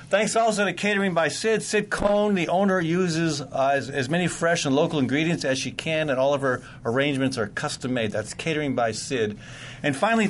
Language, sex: English, male